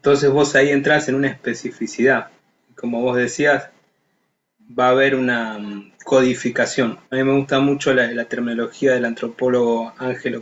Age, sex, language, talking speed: 30-49, male, Spanish, 150 wpm